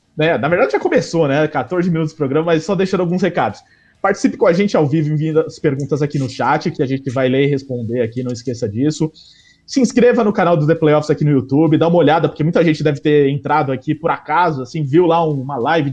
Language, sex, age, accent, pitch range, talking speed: English, male, 20-39, Brazilian, 140-175 Hz, 240 wpm